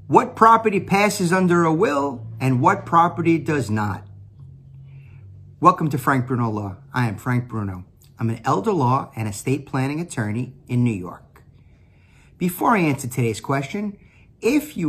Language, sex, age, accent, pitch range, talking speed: English, male, 50-69, American, 100-135 Hz, 155 wpm